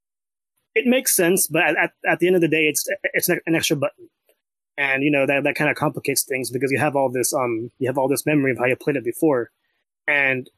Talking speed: 245 wpm